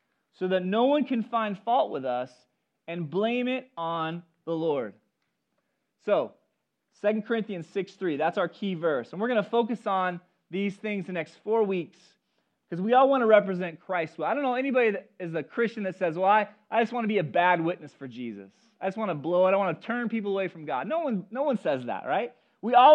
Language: English